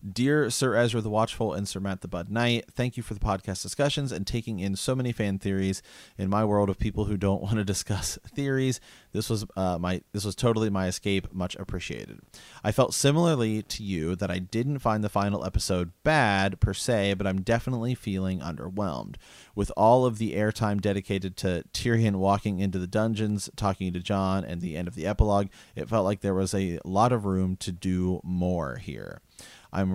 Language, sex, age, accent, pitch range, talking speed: English, male, 30-49, American, 95-110 Hz, 200 wpm